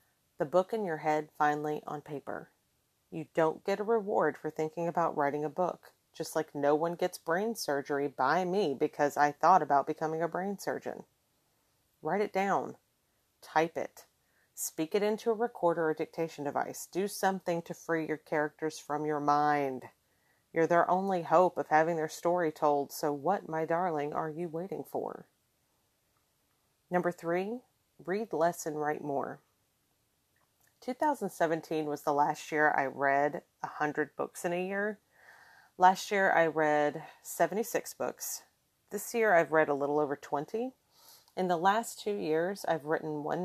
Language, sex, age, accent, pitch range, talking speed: English, female, 40-59, American, 150-180 Hz, 160 wpm